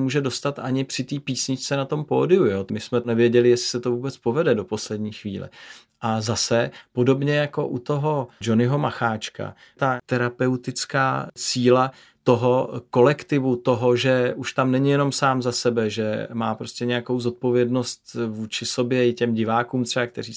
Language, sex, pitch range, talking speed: Czech, male, 115-130 Hz, 160 wpm